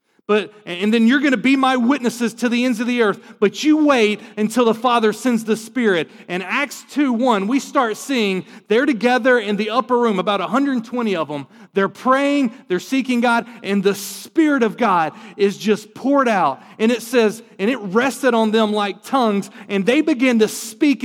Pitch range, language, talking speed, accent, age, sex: 210-260 Hz, English, 200 wpm, American, 40-59, male